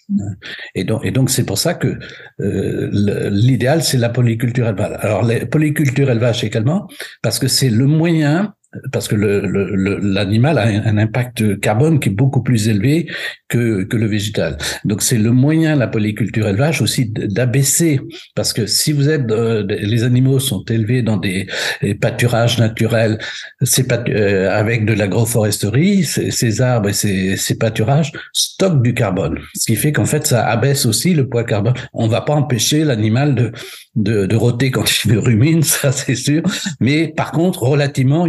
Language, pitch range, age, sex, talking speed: French, 105-140 Hz, 60-79, male, 175 wpm